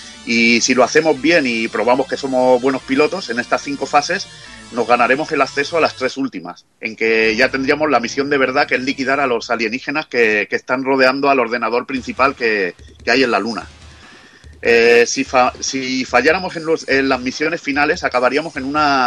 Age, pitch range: 40-59, 120-145 Hz